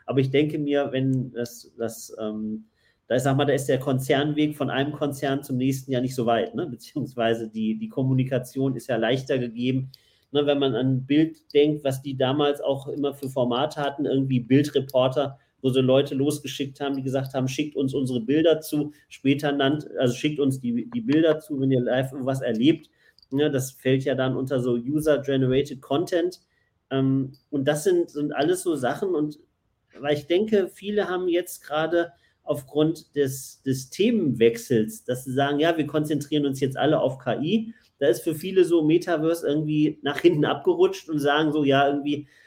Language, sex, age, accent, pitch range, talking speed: German, male, 40-59, German, 135-155 Hz, 185 wpm